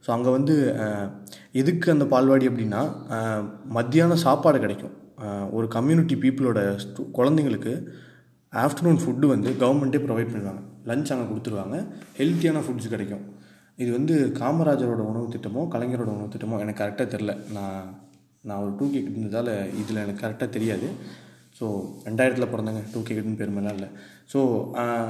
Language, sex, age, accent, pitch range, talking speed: Tamil, male, 20-39, native, 110-135 Hz, 130 wpm